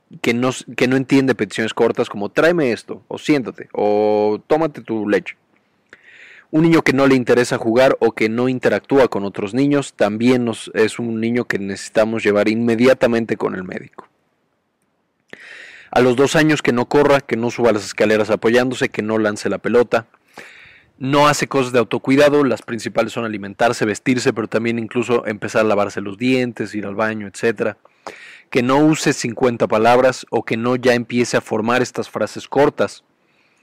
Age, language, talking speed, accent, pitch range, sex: 30-49, Spanish, 170 wpm, Mexican, 110-135 Hz, male